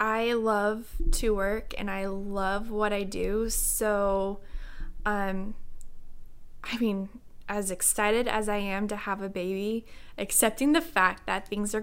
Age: 10-29